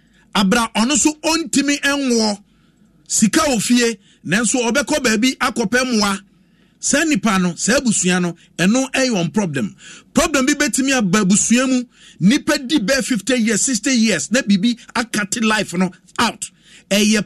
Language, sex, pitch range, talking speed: English, male, 190-255 Hz, 140 wpm